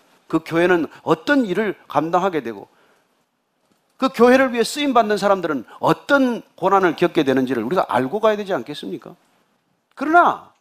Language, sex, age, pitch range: Korean, male, 40-59, 170-250 Hz